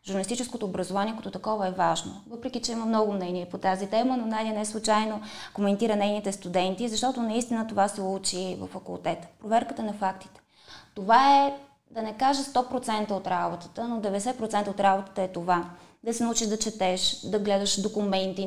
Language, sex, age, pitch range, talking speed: Bulgarian, female, 20-39, 200-250 Hz, 170 wpm